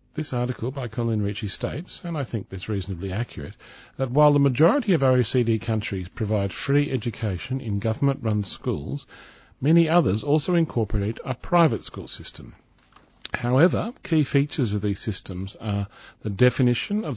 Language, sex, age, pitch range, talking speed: English, male, 50-69, 95-125 Hz, 155 wpm